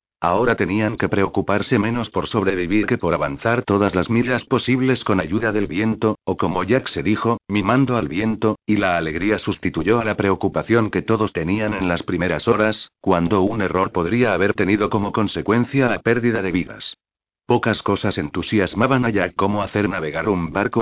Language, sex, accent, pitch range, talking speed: Spanish, male, Spanish, 95-115 Hz, 180 wpm